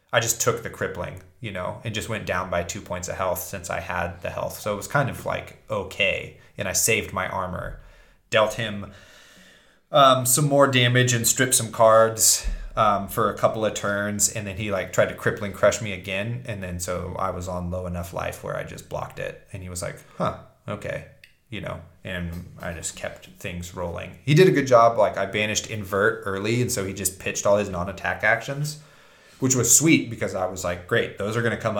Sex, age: male, 20-39